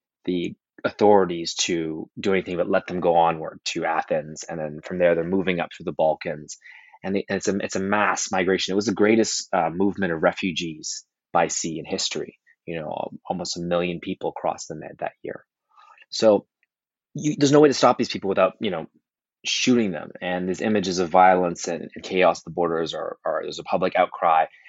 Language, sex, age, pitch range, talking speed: English, male, 20-39, 85-100 Hz, 200 wpm